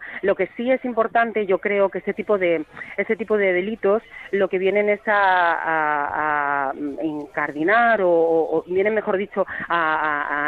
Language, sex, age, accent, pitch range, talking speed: Spanish, female, 30-49, Spanish, 165-205 Hz, 180 wpm